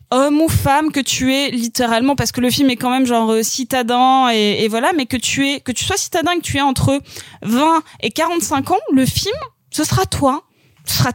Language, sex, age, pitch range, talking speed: French, female, 20-39, 245-300 Hz, 230 wpm